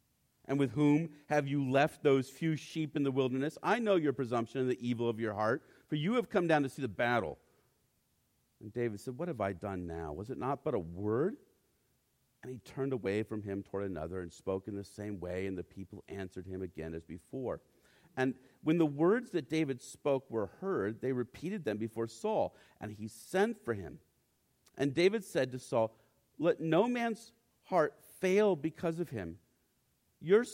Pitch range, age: 115-170 Hz, 50-69